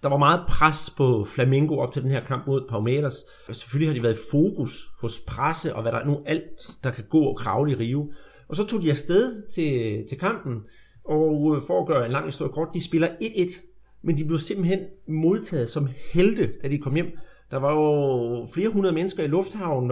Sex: male